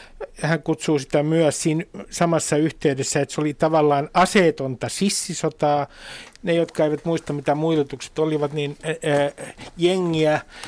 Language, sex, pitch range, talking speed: Finnish, male, 145-180 Hz, 125 wpm